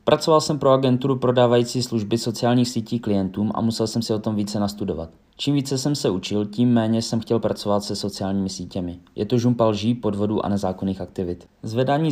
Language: Czech